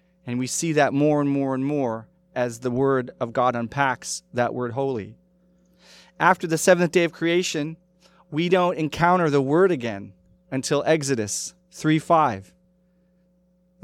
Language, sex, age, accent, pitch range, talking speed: English, male, 30-49, American, 125-180 Hz, 145 wpm